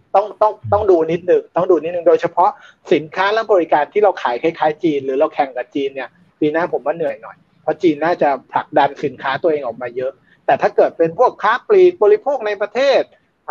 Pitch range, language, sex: 150-205 Hz, Thai, male